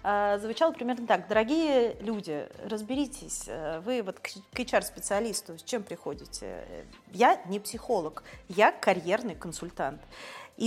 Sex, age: female, 30-49